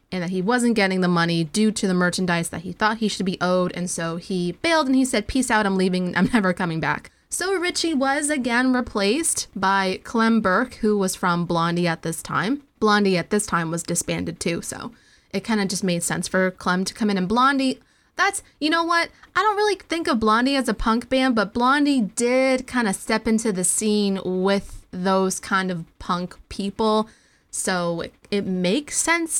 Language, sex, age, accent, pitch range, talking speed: English, female, 20-39, American, 180-250 Hz, 210 wpm